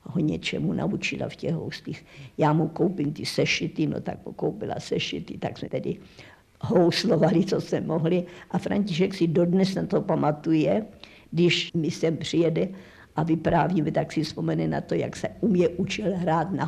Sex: female